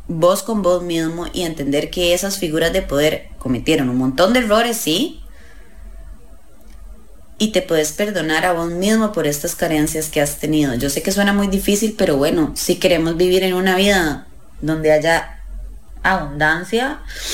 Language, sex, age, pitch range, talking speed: English, female, 20-39, 140-220 Hz, 165 wpm